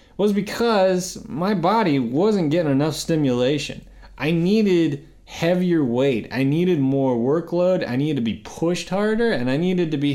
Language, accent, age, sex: English, American, 20-39, male